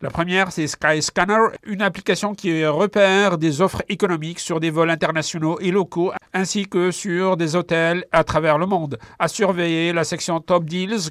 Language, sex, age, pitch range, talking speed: French, male, 50-69, 155-180 Hz, 175 wpm